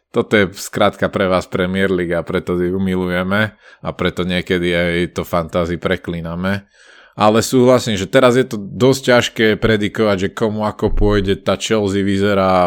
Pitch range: 95-110 Hz